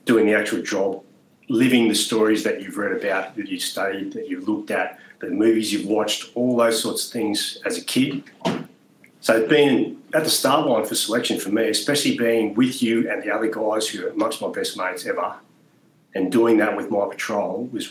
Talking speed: 210 wpm